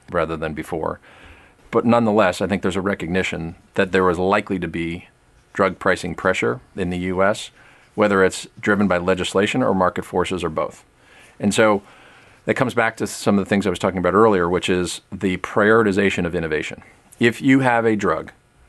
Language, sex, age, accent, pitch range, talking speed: English, male, 40-59, American, 90-100 Hz, 185 wpm